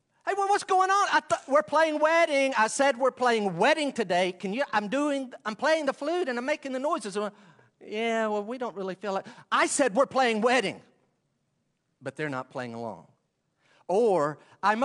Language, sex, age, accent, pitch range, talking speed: English, male, 40-59, American, 200-275 Hz, 195 wpm